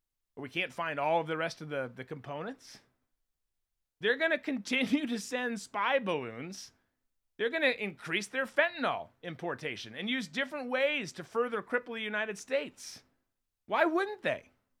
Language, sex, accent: English, male, American